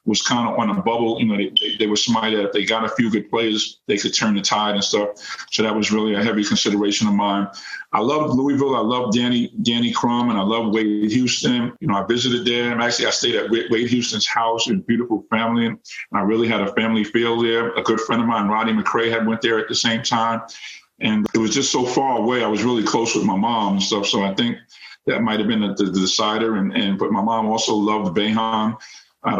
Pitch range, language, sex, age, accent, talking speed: 105-120 Hz, English, male, 50-69, American, 250 wpm